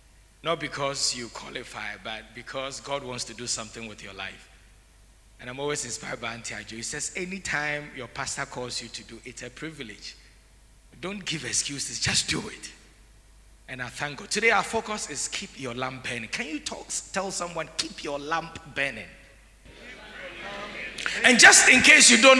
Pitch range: 120-155 Hz